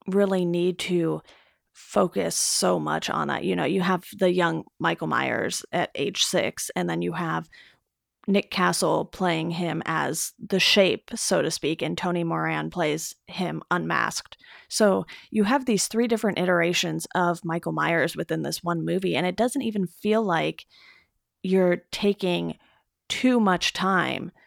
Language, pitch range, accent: English, 165-195 Hz, American